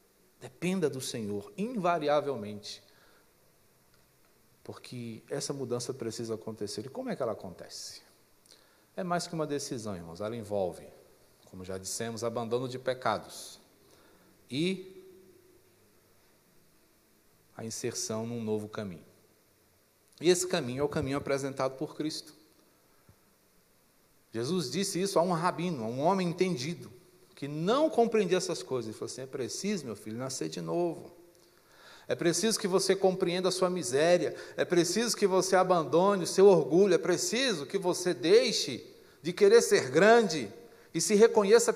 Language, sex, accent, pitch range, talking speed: Portuguese, male, Brazilian, 135-220 Hz, 140 wpm